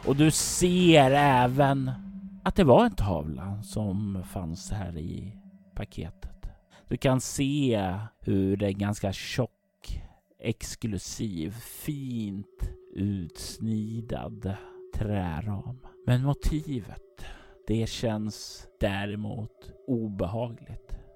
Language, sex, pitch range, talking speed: Swedish, male, 95-125 Hz, 90 wpm